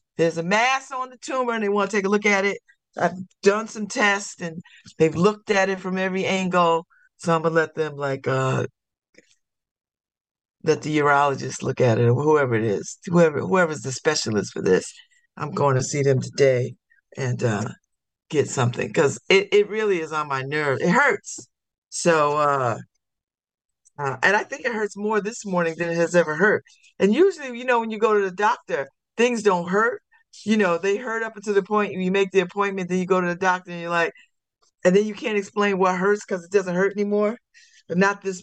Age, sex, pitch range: 50-69, female, 170-240 Hz